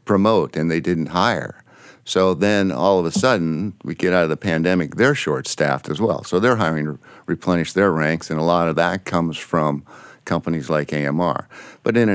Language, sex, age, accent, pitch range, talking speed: English, male, 60-79, American, 80-100 Hz, 200 wpm